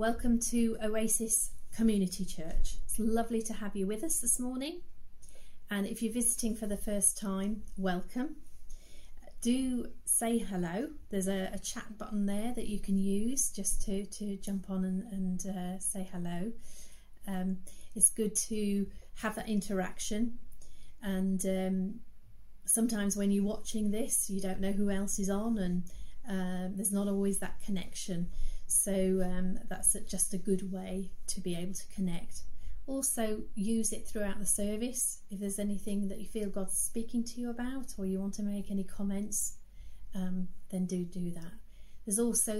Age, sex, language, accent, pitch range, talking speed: 30-49, female, English, British, 185-215 Hz, 165 wpm